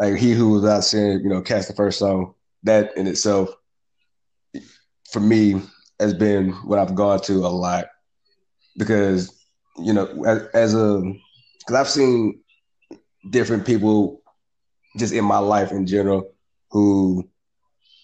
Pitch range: 95-105 Hz